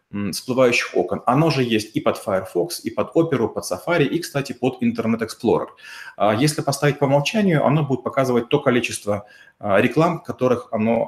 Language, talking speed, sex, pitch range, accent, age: Russian, 170 wpm, male, 115-140 Hz, native, 30-49